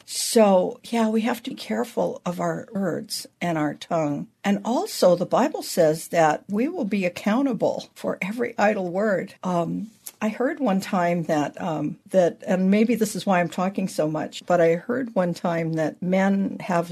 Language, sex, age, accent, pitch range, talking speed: English, female, 60-79, American, 165-225 Hz, 185 wpm